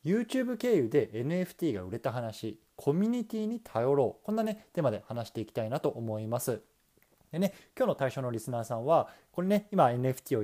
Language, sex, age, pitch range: Japanese, male, 20-39, 110-170 Hz